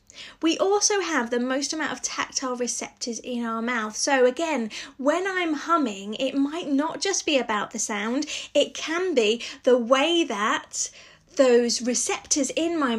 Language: English